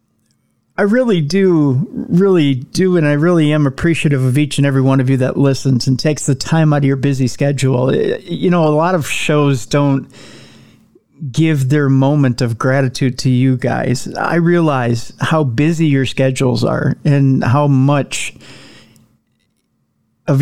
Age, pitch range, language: 40-59, 130-155 Hz, English